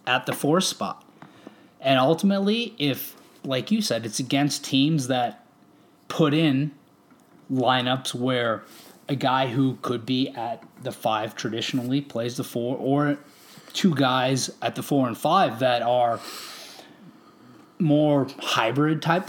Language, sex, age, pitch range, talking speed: English, male, 30-49, 130-180 Hz, 130 wpm